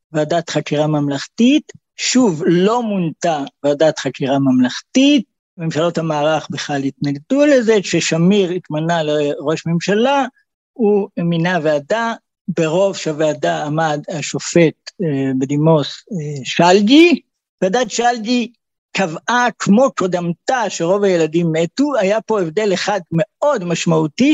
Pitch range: 155-210 Hz